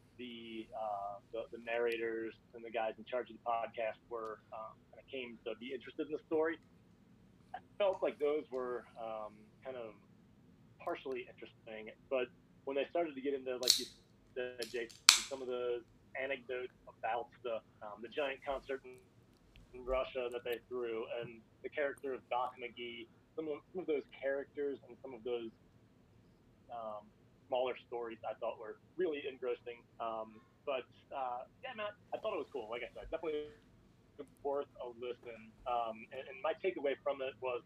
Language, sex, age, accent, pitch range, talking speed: English, male, 30-49, American, 115-135 Hz, 175 wpm